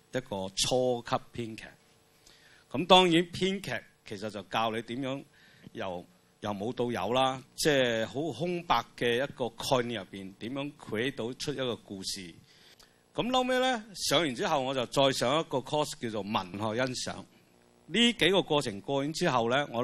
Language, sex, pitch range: Chinese, male, 95-140 Hz